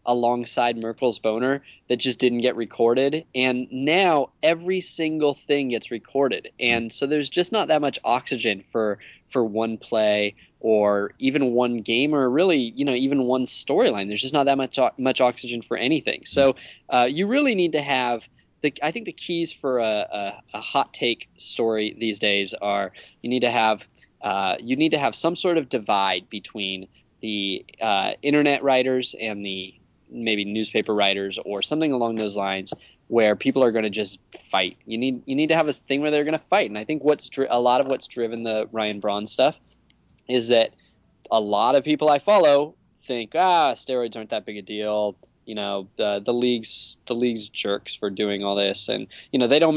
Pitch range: 105-140 Hz